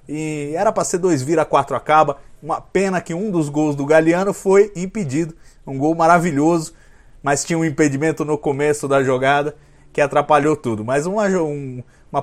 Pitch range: 145-185 Hz